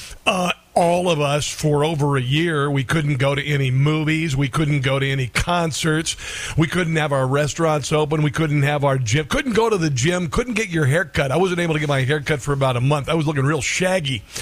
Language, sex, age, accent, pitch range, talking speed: English, male, 50-69, American, 140-180 Hz, 240 wpm